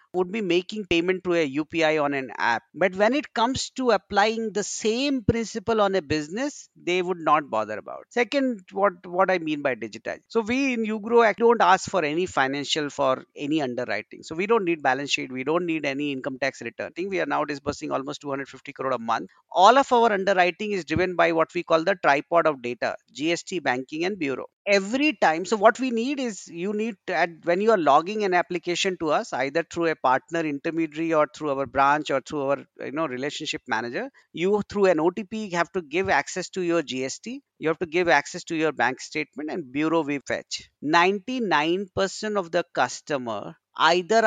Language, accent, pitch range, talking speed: English, Indian, 155-220 Hz, 210 wpm